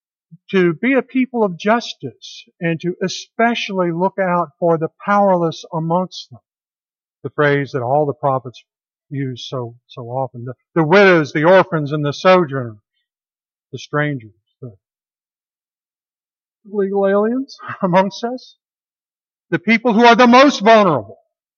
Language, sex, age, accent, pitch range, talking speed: English, male, 50-69, American, 145-200 Hz, 135 wpm